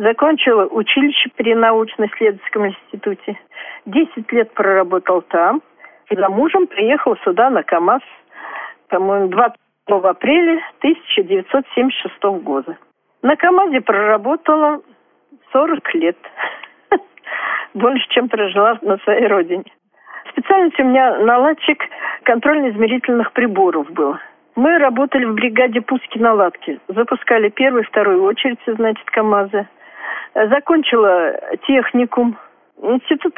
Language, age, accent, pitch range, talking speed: Russian, 50-69, native, 210-290 Hz, 95 wpm